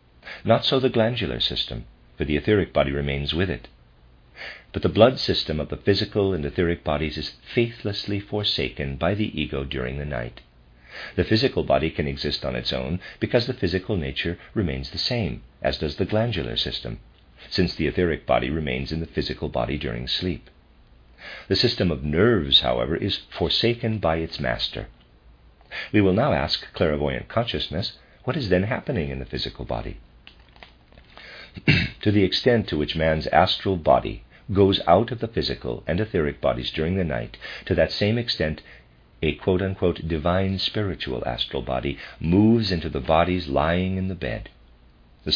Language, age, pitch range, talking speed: English, 50-69, 65-95 Hz, 165 wpm